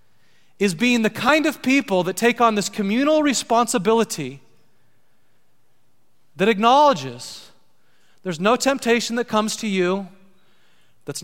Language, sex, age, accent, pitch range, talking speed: English, male, 30-49, American, 150-210 Hz, 115 wpm